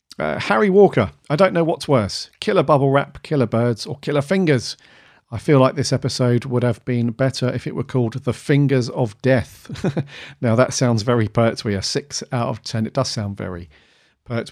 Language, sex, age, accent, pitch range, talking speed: English, male, 40-59, British, 115-145 Hz, 205 wpm